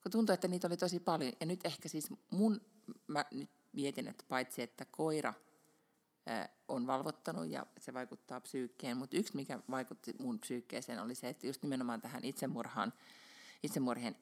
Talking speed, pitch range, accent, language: 165 wpm, 125-180 Hz, native, Finnish